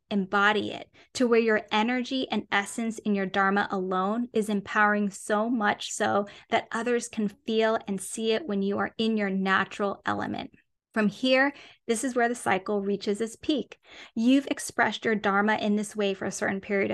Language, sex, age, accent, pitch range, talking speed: English, female, 20-39, American, 200-235 Hz, 185 wpm